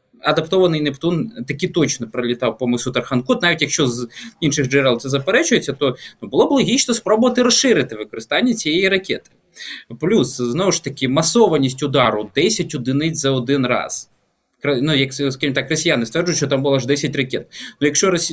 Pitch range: 140-205 Hz